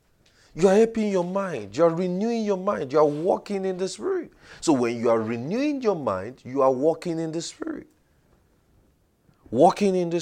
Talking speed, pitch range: 190 wpm, 130-185 Hz